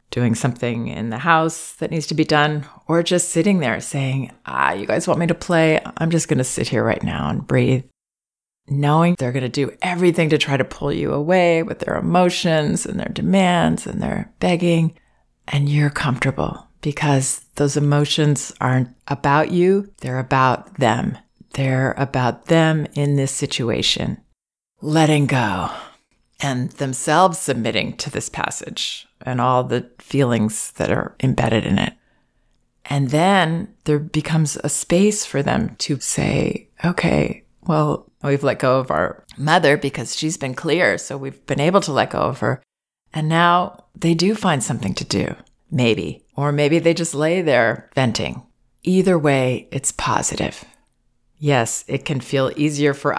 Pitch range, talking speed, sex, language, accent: 130-165 Hz, 165 wpm, female, English, American